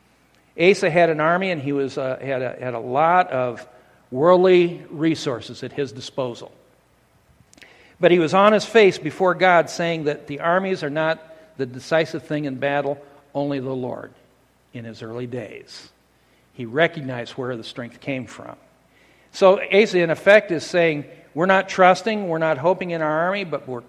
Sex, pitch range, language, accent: male, 145-200 Hz, English, American